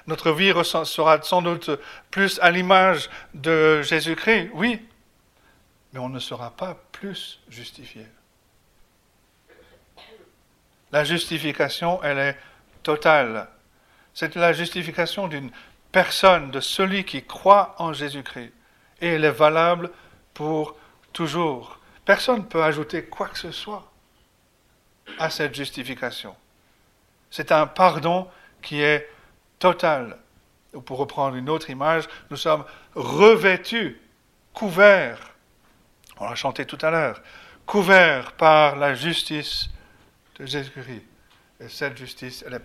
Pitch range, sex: 135-170 Hz, male